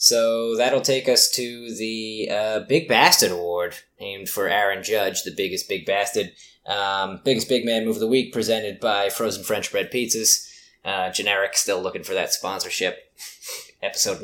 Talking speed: 170 wpm